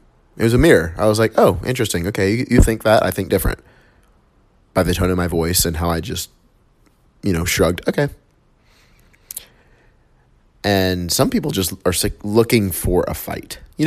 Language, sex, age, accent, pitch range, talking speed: English, male, 30-49, American, 90-110 Hz, 175 wpm